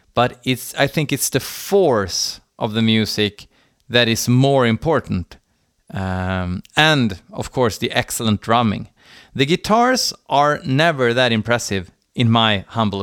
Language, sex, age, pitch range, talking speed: Swedish, male, 30-49, 105-135 Hz, 140 wpm